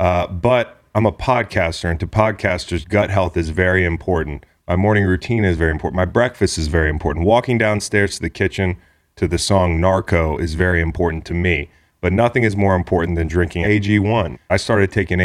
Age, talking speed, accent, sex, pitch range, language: 30-49, 195 wpm, American, male, 85-100 Hz, English